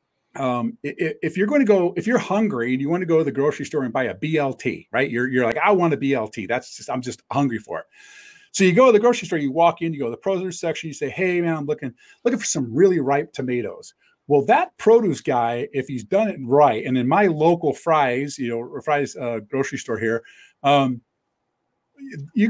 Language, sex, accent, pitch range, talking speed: English, male, American, 140-205 Hz, 235 wpm